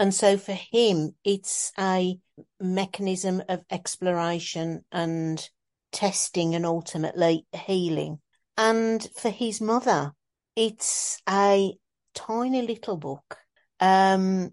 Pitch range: 165-195 Hz